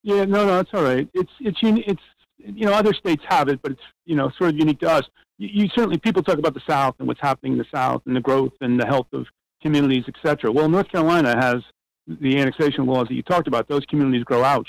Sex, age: male, 50-69